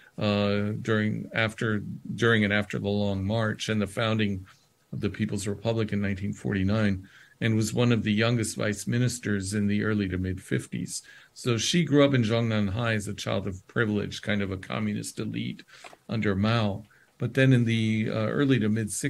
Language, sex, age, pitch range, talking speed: English, male, 50-69, 100-115 Hz, 185 wpm